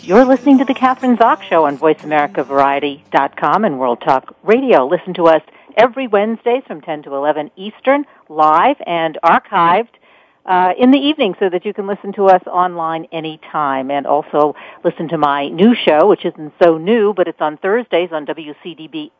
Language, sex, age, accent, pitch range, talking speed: English, female, 50-69, American, 155-225 Hz, 175 wpm